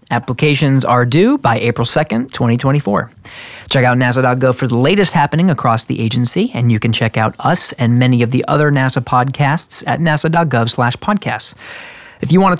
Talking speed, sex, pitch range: 175 wpm, male, 120-165 Hz